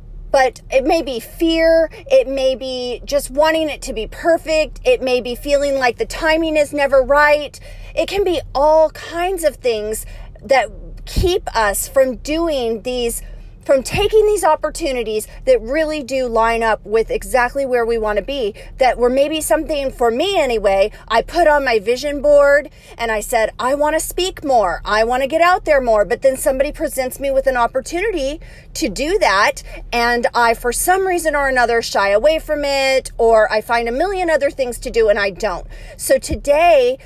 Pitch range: 235-315 Hz